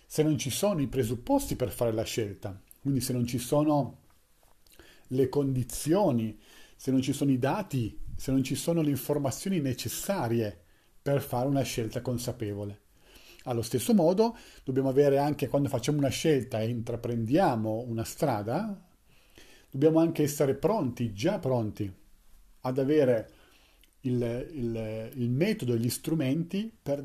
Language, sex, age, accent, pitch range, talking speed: Italian, male, 40-59, native, 115-140 Hz, 145 wpm